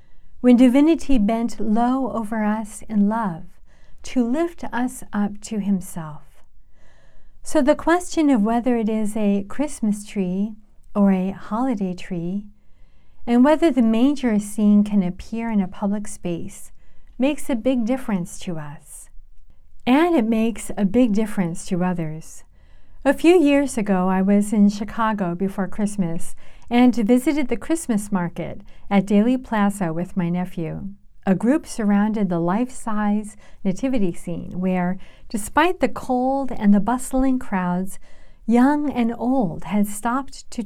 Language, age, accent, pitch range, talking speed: English, 50-69, American, 195-245 Hz, 140 wpm